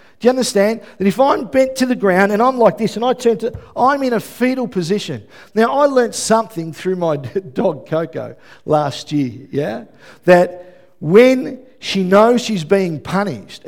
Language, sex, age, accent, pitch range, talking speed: English, male, 50-69, Australian, 140-215 Hz, 180 wpm